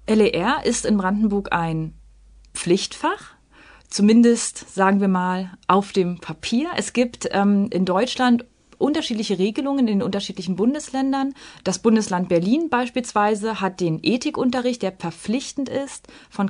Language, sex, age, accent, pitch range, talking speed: German, female, 30-49, German, 190-245 Hz, 125 wpm